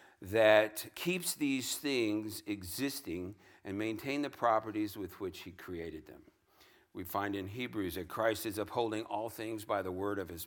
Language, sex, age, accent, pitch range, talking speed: English, male, 60-79, American, 95-120 Hz, 165 wpm